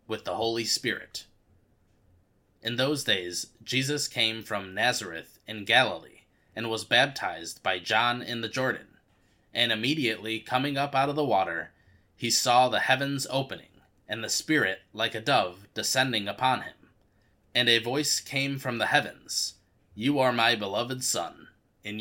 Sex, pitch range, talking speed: male, 105-130 Hz, 155 wpm